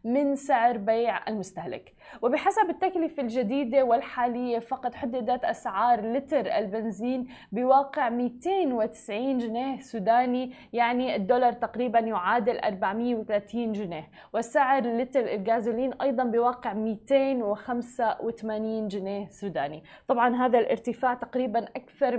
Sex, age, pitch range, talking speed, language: female, 20-39, 220-265 Hz, 95 wpm, Arabic